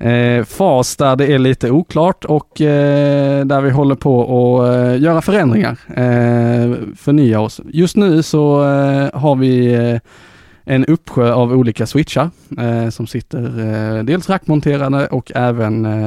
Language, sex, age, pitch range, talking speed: Swedish, male, 20-39, 115-145 Hz, 125 wpm